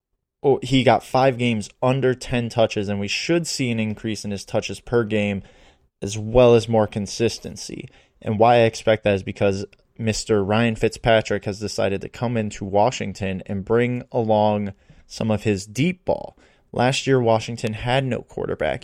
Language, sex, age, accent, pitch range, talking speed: English, male, 20-39, American, 105-120 Hz, 170 wpm